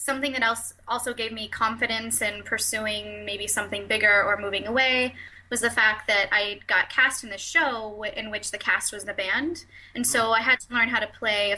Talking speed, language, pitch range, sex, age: 220 wpm, English, 200-245 Hz, female, 10-29